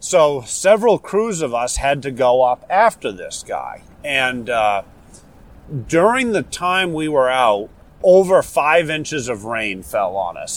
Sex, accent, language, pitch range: male, American, English, 120-155 Hz